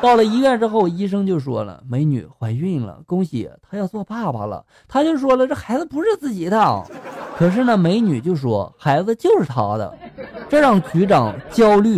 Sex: male